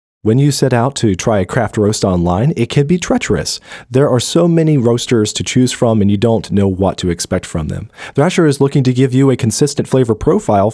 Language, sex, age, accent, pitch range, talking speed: English, male, 40-59, American, 105-145 Hz, 230 wpm